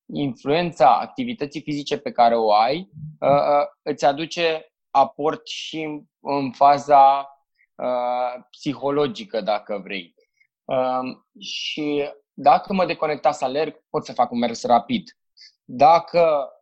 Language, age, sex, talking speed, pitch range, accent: Romanian, 20-39, male, 105 wpm, 120-155 Hz, native